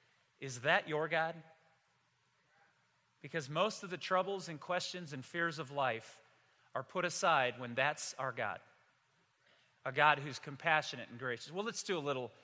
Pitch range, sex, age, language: 145-210 Hz, male, 40-59, English